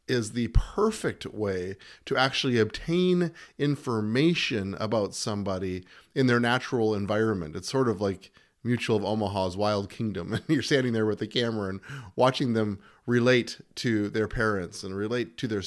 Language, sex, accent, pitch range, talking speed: English, male, American, 105-135 Hz, 160 wpm